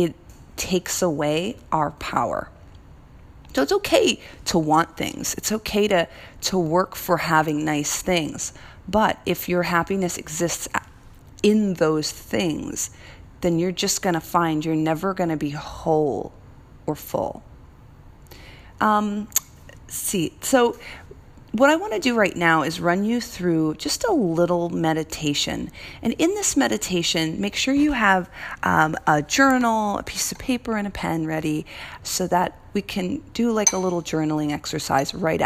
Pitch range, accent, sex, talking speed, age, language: 155-215 Hz, American, female, 150 wpm, 40-59, English